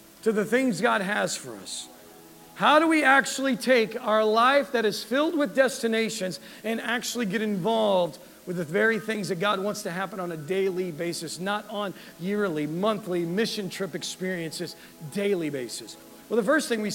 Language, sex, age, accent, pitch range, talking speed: English, male, 40-59, American, 215-290 Hz, 175 wpm